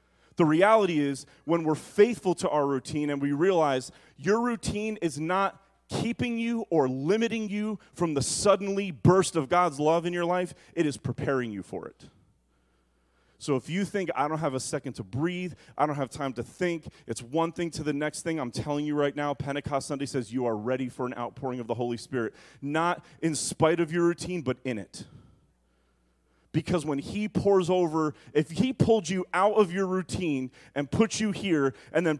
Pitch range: 140-190 Hz